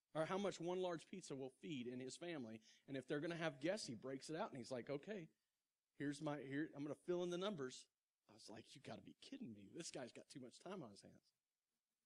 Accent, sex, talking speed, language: American, male, 270 wpm, English